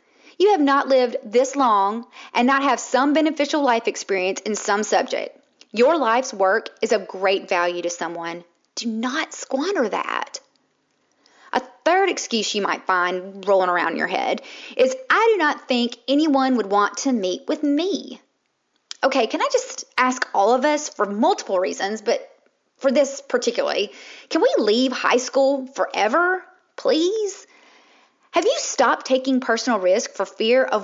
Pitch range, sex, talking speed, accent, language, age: 225-320 Hz, female, 160 wpm, American, English, 30-49